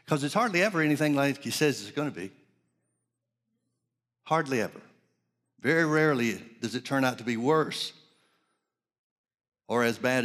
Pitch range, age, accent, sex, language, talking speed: 120-155 Hz, 60-79, American, male, English, 150 wpm